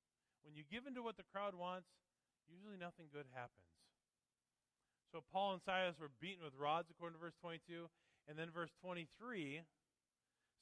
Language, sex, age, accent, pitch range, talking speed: English, male, 40-59, American, 115-180 Hz, 165 wpm